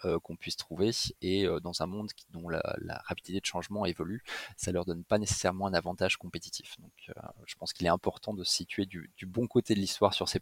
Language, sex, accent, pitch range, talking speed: French, male, French, 90-110 Hz, 250 wpm